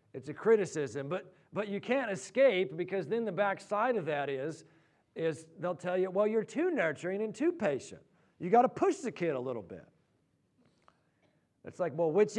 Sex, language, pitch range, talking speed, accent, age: male, English, 145-190 Hz, 190 wpm, American, 50-69